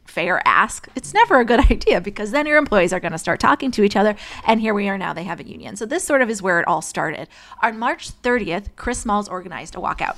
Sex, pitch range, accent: female, 180-240 Hz, American